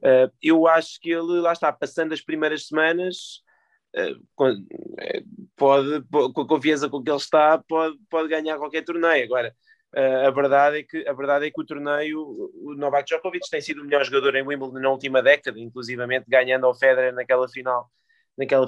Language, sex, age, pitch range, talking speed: Portuguese, male, 20-39, 130-165 Hz, 165 wpm